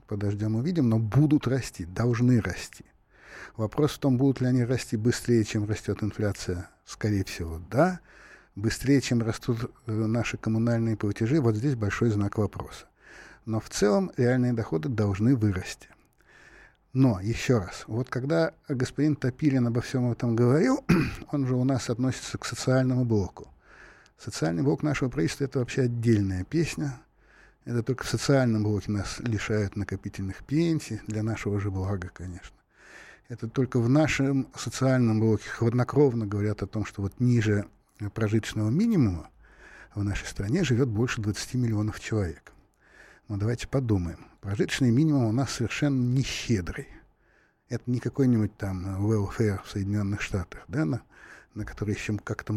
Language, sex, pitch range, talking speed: Russian, male, 105-135 Hz, 145 wpm